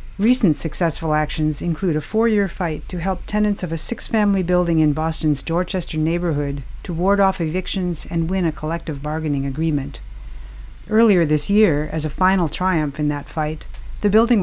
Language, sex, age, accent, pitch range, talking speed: English, female, 50-69, American, 155-190 Hz, 165 wpm